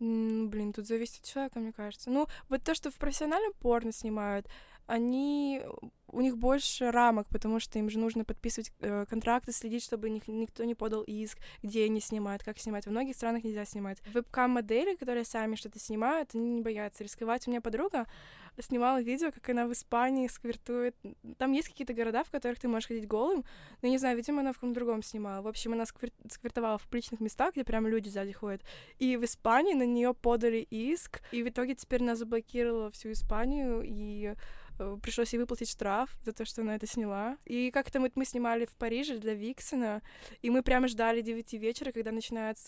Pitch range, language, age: 220-245 Hz, Russian, 20-39